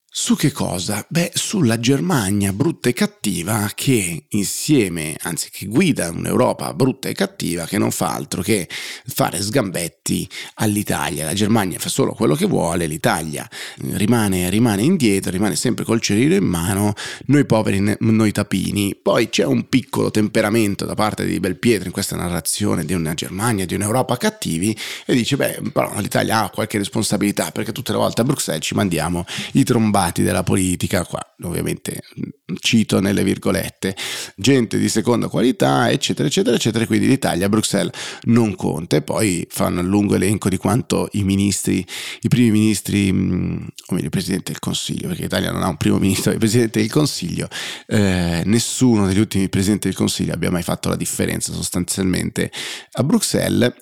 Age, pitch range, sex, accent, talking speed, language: 30-49, 95-115 Hz, male, native, 165 wpm, Italian